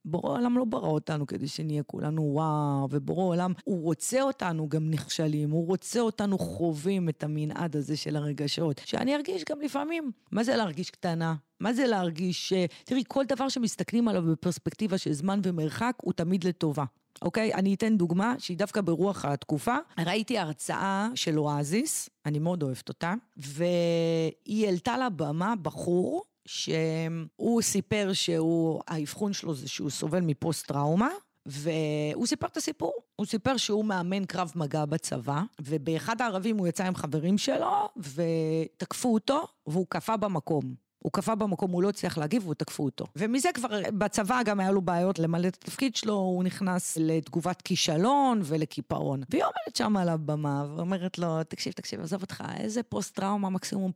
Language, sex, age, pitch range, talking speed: Hebrew, female, 30-49, 155-220 Hz, 160 wpm